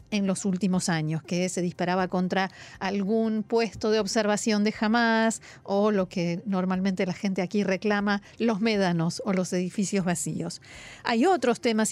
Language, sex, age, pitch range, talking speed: Spanish, female, 40-59, 190-240 Hz, 155 wpm